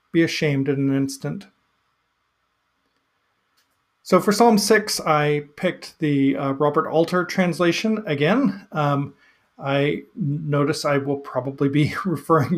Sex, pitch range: male, 130-165 Hz